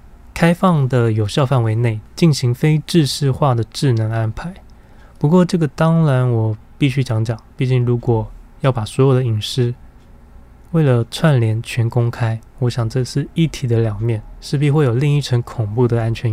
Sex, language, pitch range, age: male, Chinese, 115-140 Hz, 20-39